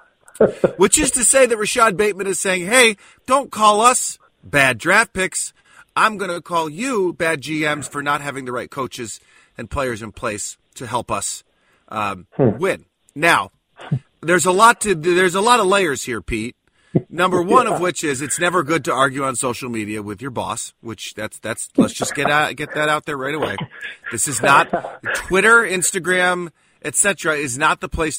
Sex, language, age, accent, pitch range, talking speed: male, English, 30-49, American, 140-190 Hz, 190 wpm